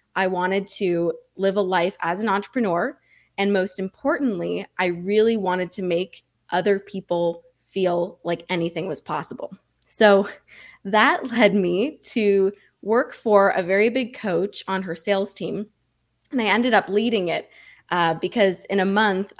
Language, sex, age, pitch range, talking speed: English, female, 20-39, 180-210 Hz, 155 wpm